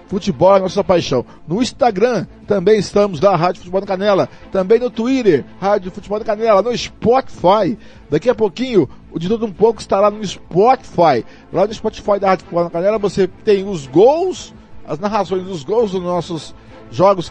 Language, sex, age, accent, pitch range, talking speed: Portuguese, male, 50-69, Brazilian, 170-220 Hz, 185 wpm